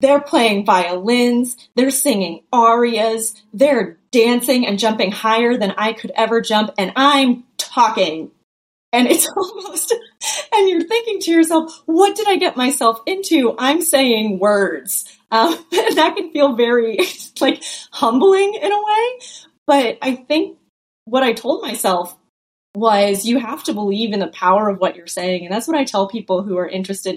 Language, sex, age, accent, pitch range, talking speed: English, female, 30-49, American, 210-295 Hz, 165 wpm